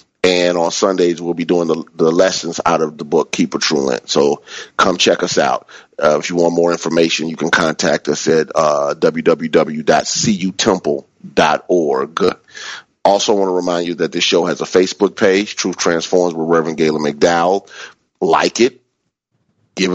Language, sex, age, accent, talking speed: English, male, 40-59, American, 165 wpm